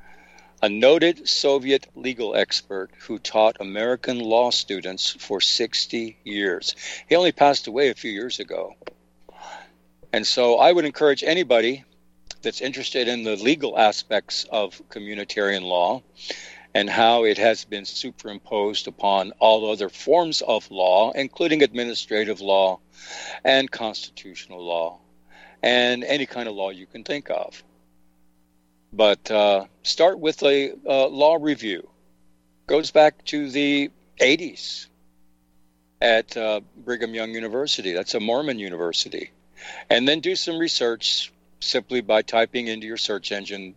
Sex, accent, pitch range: male, American, 85-130 Hz